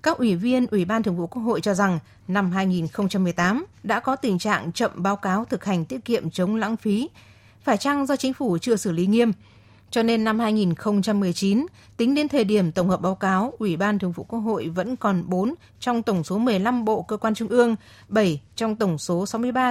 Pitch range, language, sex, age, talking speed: 180-230 Hz, Vietnamese, female, 20-39, 215 wpm